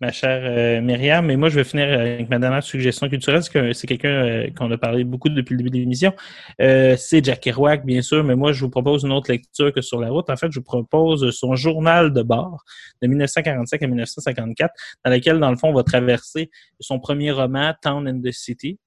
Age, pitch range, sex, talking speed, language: 20-39, 125-145 Hz, male, 235 wpm, French